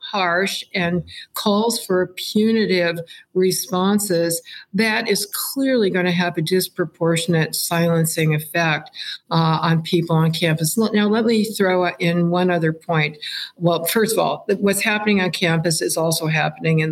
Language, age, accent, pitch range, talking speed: English, 60-79, American, 165-195 Hz, 145 wpm